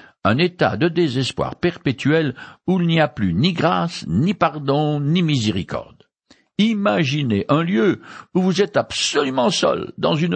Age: 60-79